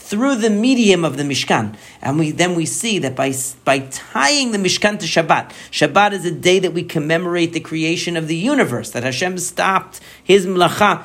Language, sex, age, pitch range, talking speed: English, male, 50-69, 140-180 Hz, 195 wpm